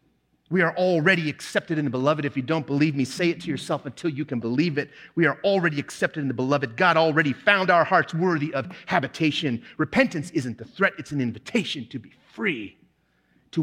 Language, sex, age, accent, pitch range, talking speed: English, male, 30-49, American, 115-155 Hz, 205 wpm